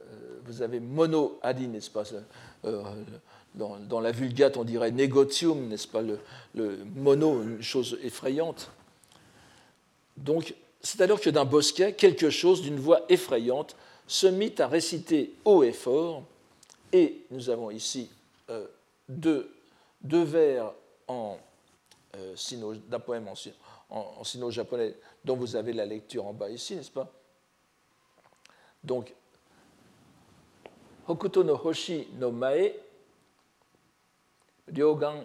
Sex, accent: male, French